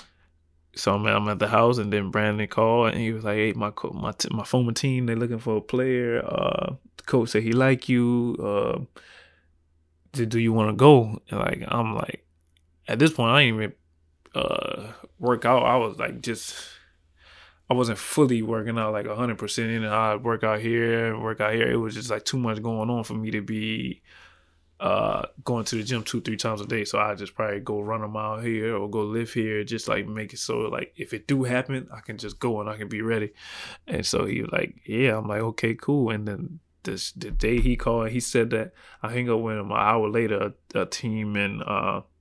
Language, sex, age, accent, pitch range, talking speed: Swedish, male, 20-39, American, 105-115 Hz, 230 wpm